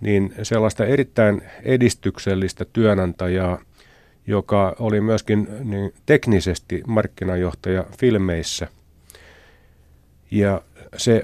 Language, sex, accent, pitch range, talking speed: Finnish, male, native, 90-110 Hz, 75 wpm